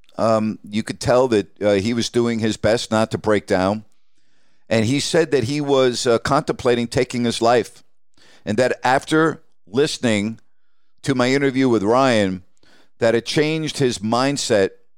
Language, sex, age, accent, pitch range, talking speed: English, male, 50-69, American, 110-130 Hz, 160 wpm